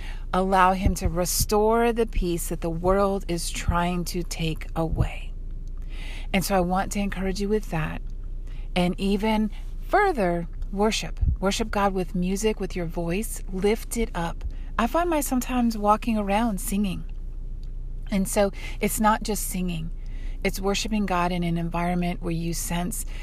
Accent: American